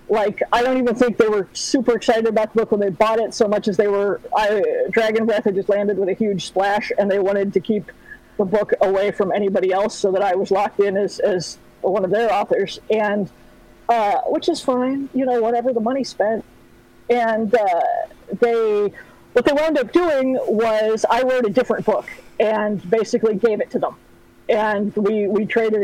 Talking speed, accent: 205 wpm, American